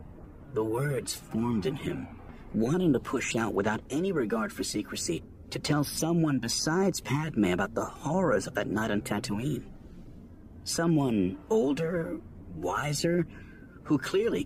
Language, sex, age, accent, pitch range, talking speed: English, male, 40-59, American, 85-120 Hz, 135 wpm